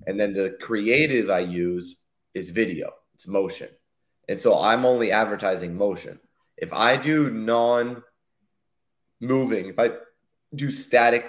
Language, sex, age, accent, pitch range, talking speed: English, male, 30-49, American, 100-130 Hz, 130 wpm